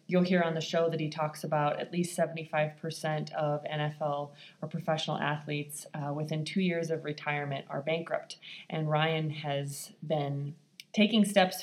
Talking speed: 160 wpm